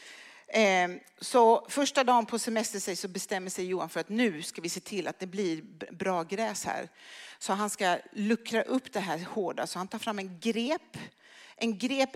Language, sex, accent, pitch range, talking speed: Swedish, female, native, 175-230 Hz, 190 wpm